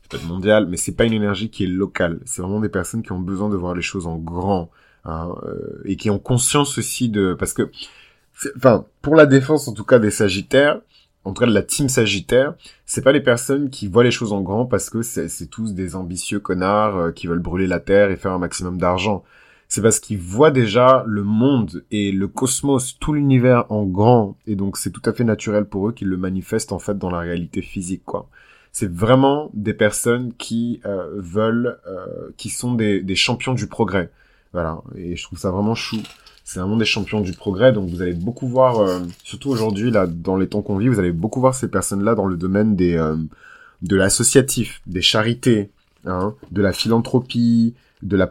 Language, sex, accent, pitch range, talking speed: French, male, French, 95-120 Hz, 215 wpm